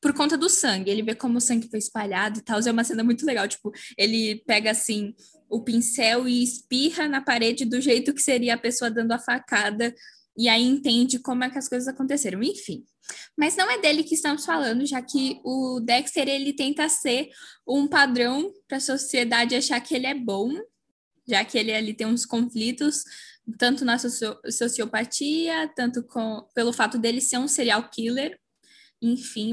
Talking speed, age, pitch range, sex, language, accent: 185 wpm, 10-29, 240-310 Hz, female, Portuguese, Brazilian